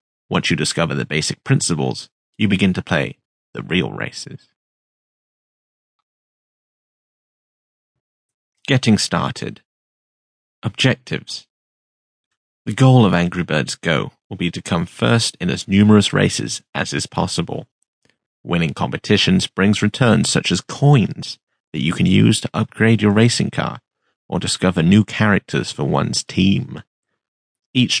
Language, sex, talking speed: English, male, 125 wpm